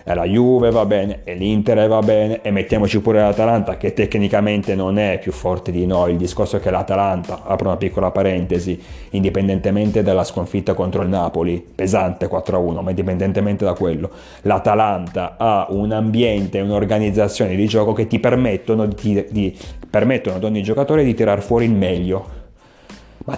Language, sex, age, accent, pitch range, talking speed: Italian, male, 30-49, native, 95-145 Hz, 165 wpm